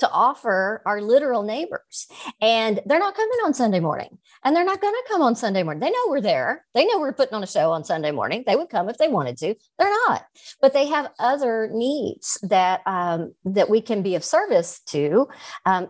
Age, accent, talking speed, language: 50-69, American, 225 wpm, English